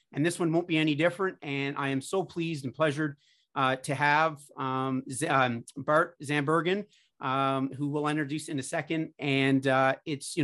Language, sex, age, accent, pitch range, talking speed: English, male, 30-49, American, 140-165 Hz, 190 wpm